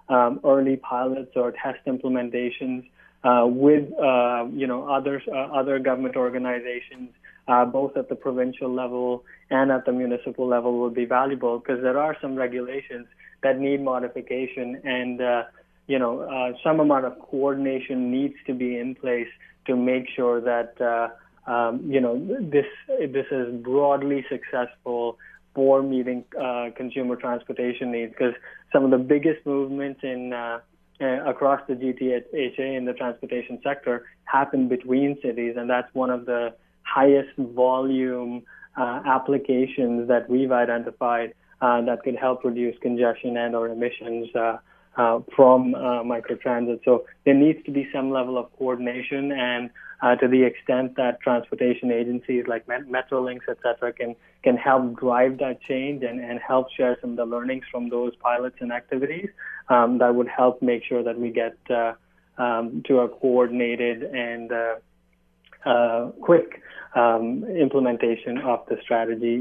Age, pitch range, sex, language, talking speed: 20-39, 120-130 Hz, male, English, 155 wpm